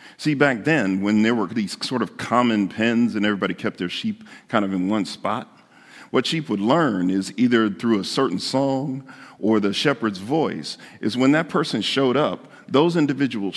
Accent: American